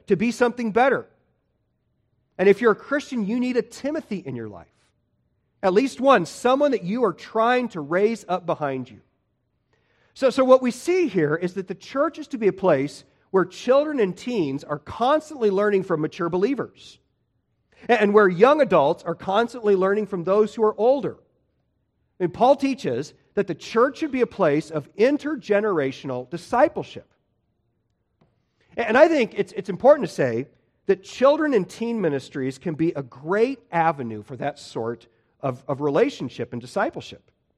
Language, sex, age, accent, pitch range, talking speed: English, male, 40-59, American, 155-250 Hz, 170 wpm